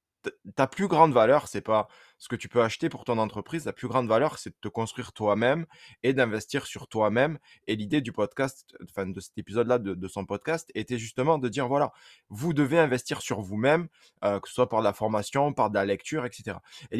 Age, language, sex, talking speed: 20-39, French, male, 230 wpm